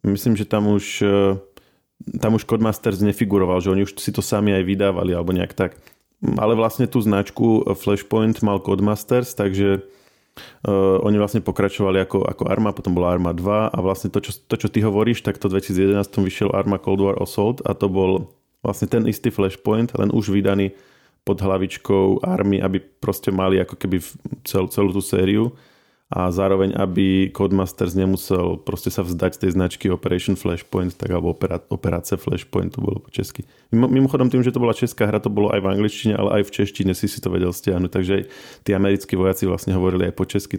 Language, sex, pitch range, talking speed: Slovak, male, 95-105 Hz, 190 wpm